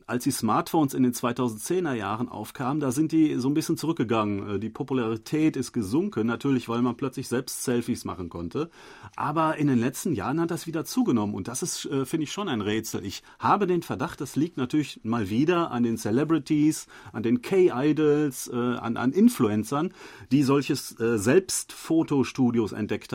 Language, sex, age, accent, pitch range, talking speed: German, male, 40-59, German, 115-150 Hz, 165 wpm